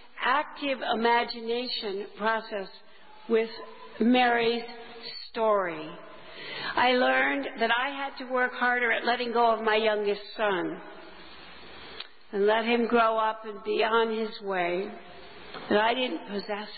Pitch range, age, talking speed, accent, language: 205-240 Hz, 50-69, 125 wpm, American, English